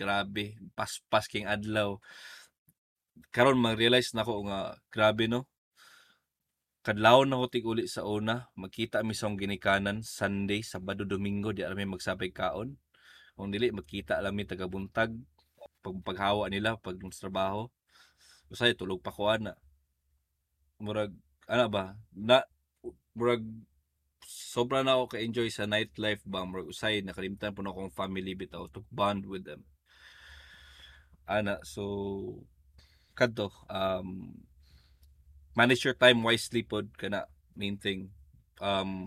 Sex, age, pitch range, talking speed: male, 20-39, 95-110 Hz, 125 wpm